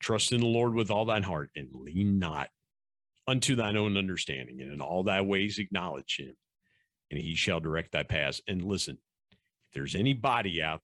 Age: 50-69